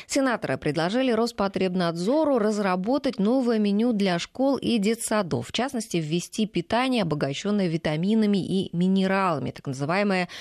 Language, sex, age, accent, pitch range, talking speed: Russian, female, 20-39, native, 160-220 Hz, 115 wpm